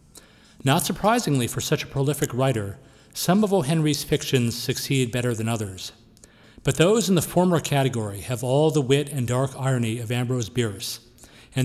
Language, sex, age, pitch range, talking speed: English, male, 40-59, 115-145 Hz, 165 wpm